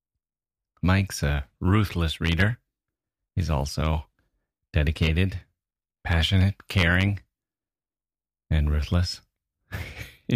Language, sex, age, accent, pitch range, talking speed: English, male, 30-49, American, 80-95 Hz, 65 wpm